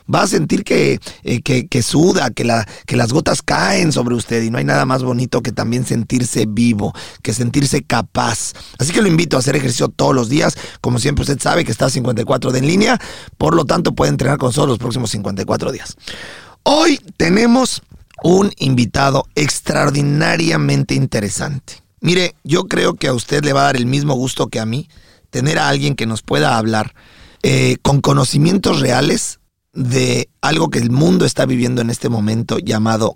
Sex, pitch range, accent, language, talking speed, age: male, 120-150 Hz, Mexican, Spanish, 185 wpm, 40-59